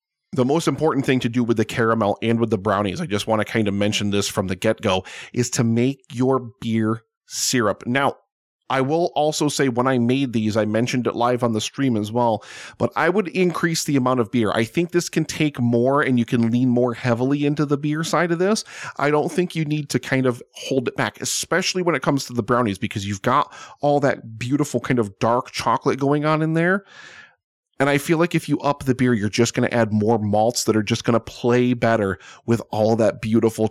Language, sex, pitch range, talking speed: English, male, 110-145 Hz, 240 wpm